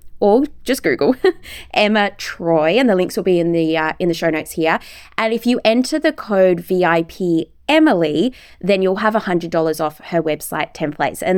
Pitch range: 175-290 Hz